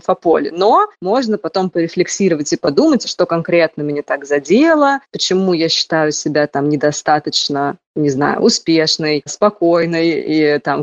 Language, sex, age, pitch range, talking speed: Russian, female, 20-39, 160-195 Hz, 130 wpm